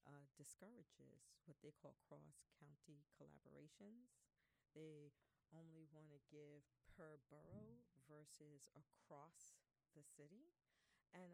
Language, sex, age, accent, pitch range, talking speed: English, female, 40-59, American, 145-175 Hz, 100 wpm